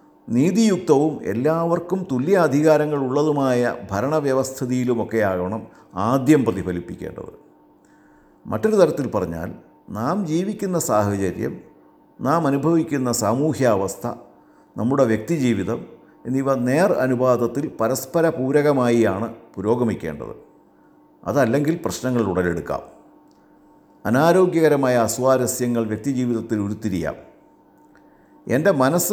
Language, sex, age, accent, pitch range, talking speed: Malayalam, male, 50-69, native, 115-150 Hz, 65 wpm